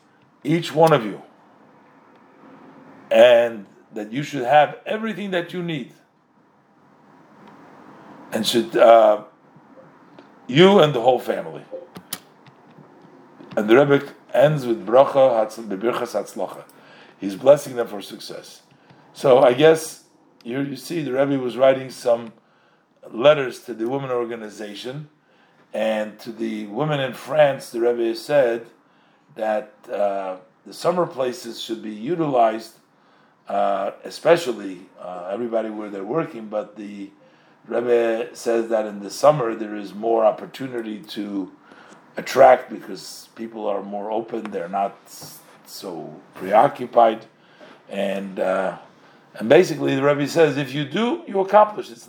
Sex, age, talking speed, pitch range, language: male, 50-69, 130 wpm, 110-150 Hz, English